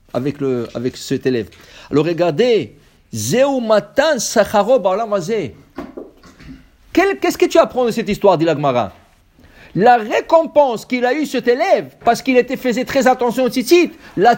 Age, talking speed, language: 60-79, 140 wpm, English